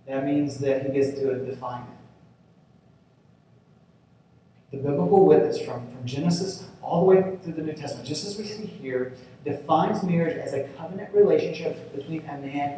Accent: American